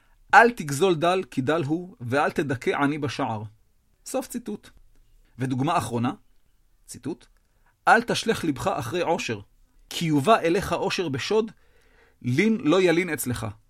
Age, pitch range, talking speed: 40-59, 115-180 Hz, 125 wpm